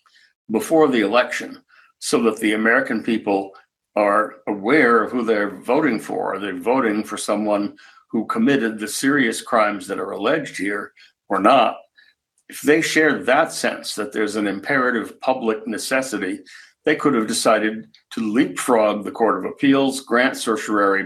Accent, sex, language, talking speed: American, male, English, 155 wpm